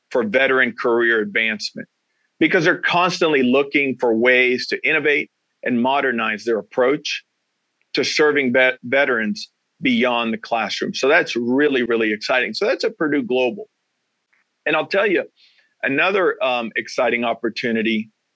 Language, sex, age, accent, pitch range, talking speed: English, male, 40-59, American, 115-140 Hz, 130 wpm